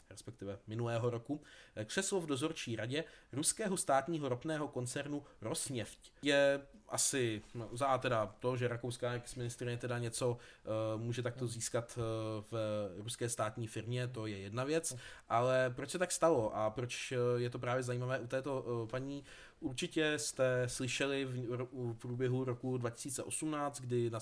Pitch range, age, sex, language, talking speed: 115-135 Hz, 20-39, male, Czech, 140 wpm